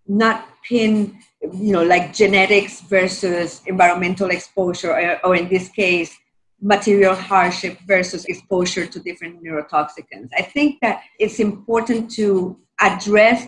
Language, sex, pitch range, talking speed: English, female, 185-225 Hz, 120 wpm